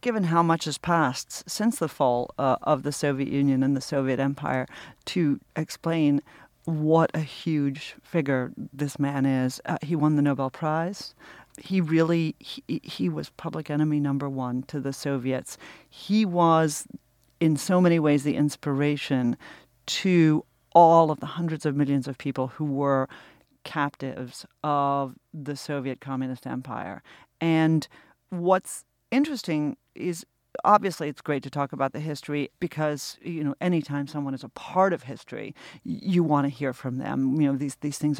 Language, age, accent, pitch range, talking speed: English, 40-59, American, 140-180 Hz, 160 wpm